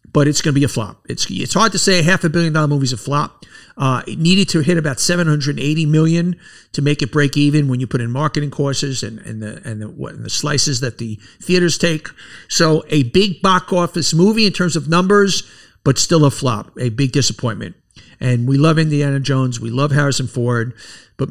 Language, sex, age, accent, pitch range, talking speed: English, male, 50-69, American, 130-175 Hz, 230 wpm